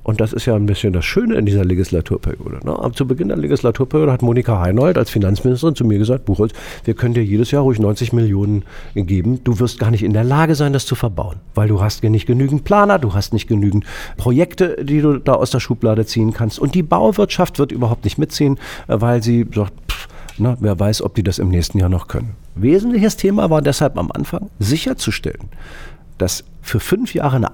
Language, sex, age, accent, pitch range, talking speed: German, male, 50-69, German, 105-160 Hz, 220 wpm